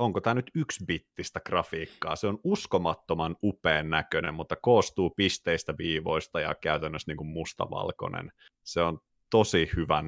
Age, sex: 30-49, male